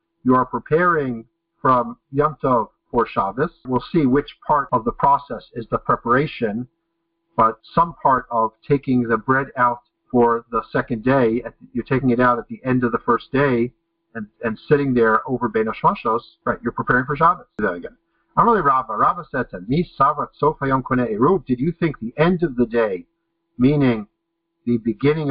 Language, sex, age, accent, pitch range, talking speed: English, male, 50-69, American, 120-165 Hz, 150 wpm